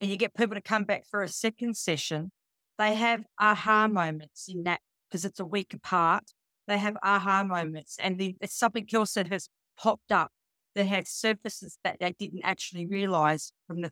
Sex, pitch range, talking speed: female, 170-210 Hz, 195 wpm